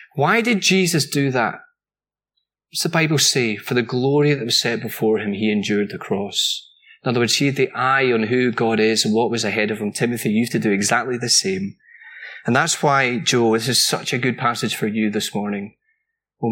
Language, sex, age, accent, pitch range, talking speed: English, male, 30-49, British, 125-180 Hz, 220 wpm